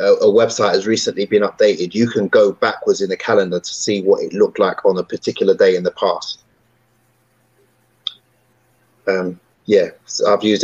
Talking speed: 170 wpm